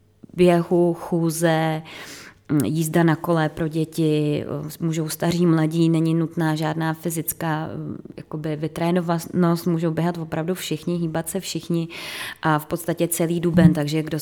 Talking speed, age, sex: 125 wpm, 20-39, female